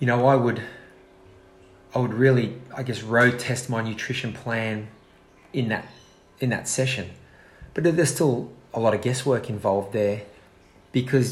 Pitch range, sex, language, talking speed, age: 110-125 Hz, male, English, 155 wpm, 30-49